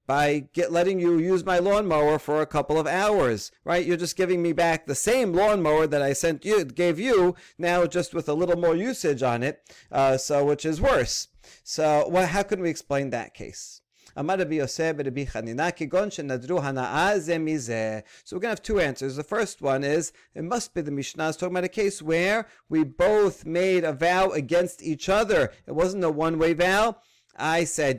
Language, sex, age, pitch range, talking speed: English, male, 40-59, 140-180 Hz, 180 wpm